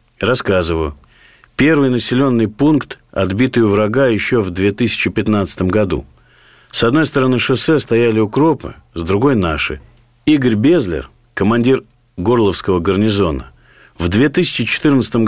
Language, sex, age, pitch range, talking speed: Russian, male, 50-69, 105-135 Hz, 110 wpm